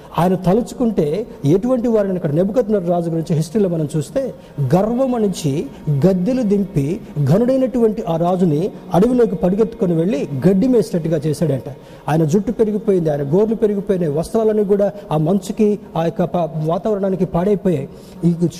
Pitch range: 155-210 Hz